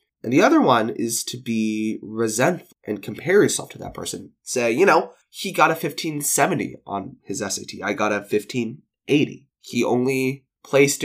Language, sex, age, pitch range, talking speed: English, male, 20-39, 115-165 Hz, 170 wpm